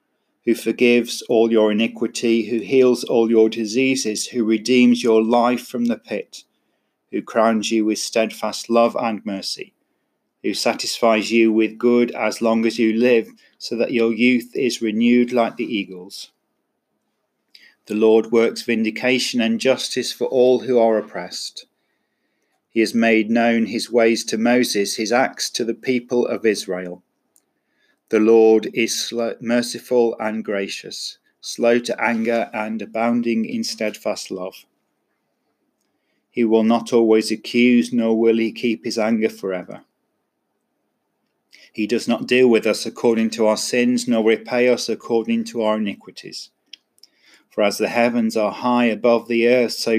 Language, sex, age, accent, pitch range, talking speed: English, male, 40-59, British, 110-120 Hz, 150 wpm